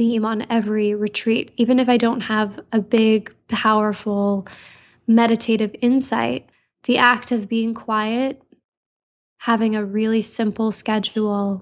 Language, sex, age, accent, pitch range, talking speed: English, female, 10-29, American, 210-230 Hz, 120 wpm